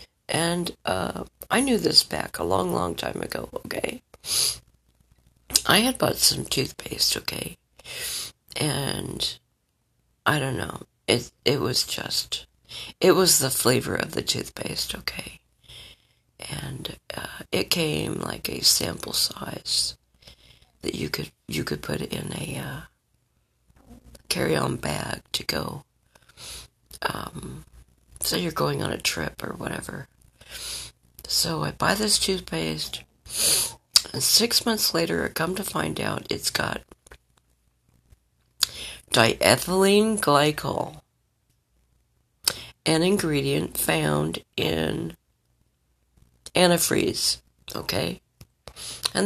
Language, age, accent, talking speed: English, 50-69, American, 110 wpm